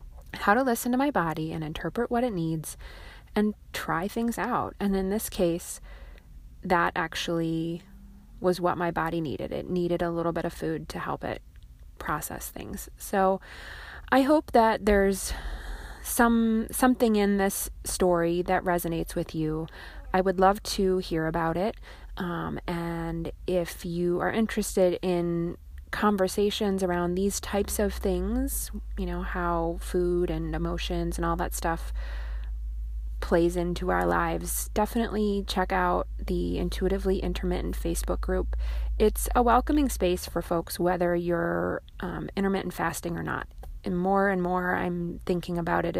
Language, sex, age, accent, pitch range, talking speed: English, female, 20-39, American, 170-195 Hz, 150 wpm